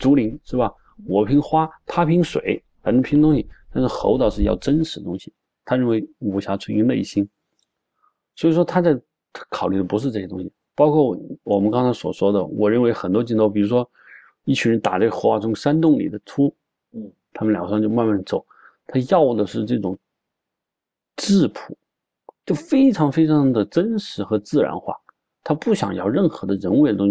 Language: Chinese